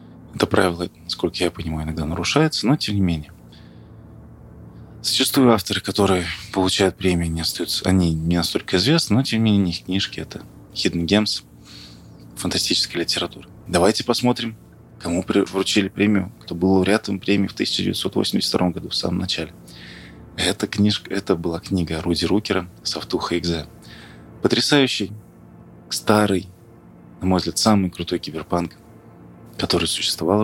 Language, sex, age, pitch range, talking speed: Russian, male, 20-39, 85-105 Hz, 130 wpm